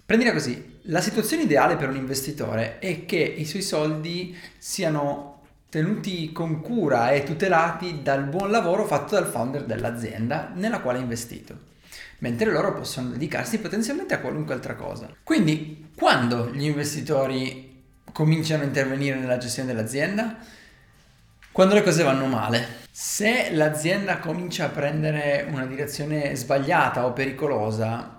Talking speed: 135 wpm